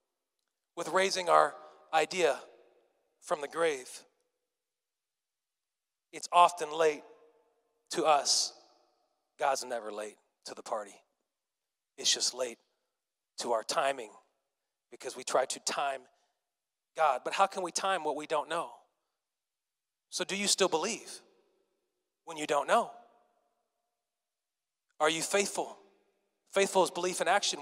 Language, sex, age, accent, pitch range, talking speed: English, male, 30-49, American, 180-245 Hz, 120 wpm